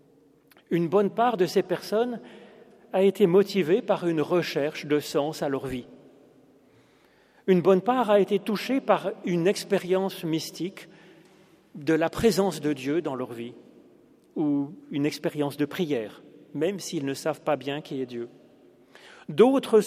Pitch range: 150-195 Hz